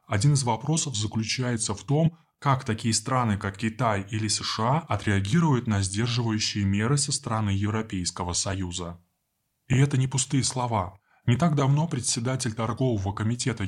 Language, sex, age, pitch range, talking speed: Russian, male, 20-39, 105-135 Hz, 140 wpm